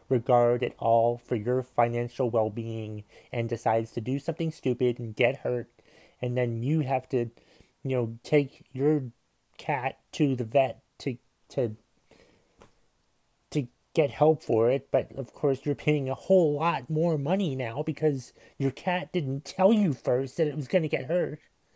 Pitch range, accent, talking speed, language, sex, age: 120-155 Hz, American, 170 wpm, English, male, 30-49